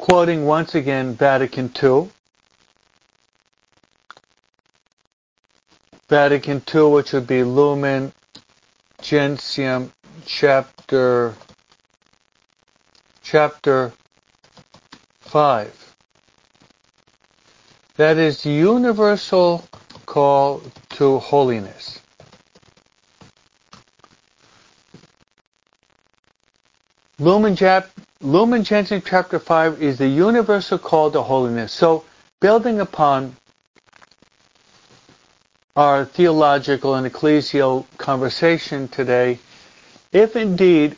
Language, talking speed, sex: English, 65 wpm, male